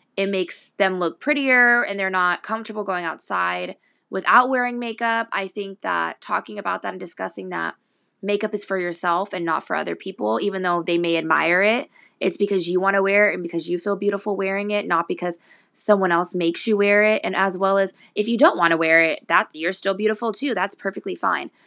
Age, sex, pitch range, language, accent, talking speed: 20-39, female, 180-205 Hz, English, American, 220 wpm